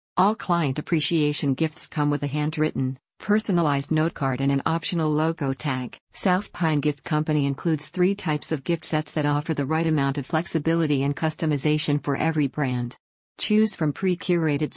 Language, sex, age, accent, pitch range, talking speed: English, female, 50-69, American, 145-170 Hz, 165 wpm